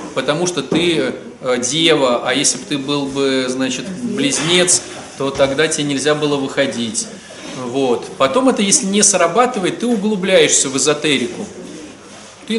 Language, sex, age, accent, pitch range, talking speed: Russian, male, 30-49, native, 145-195 Hz, 140 wpm